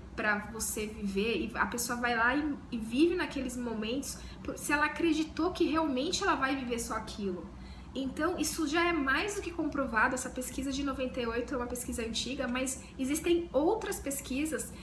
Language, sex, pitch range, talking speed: Portuguese, female, 245-315 Hz, 175 wpm